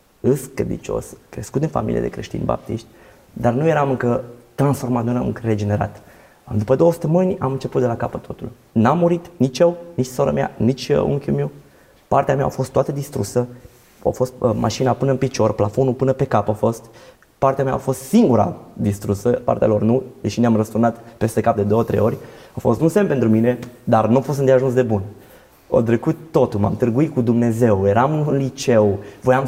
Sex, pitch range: male, 110-135 Hz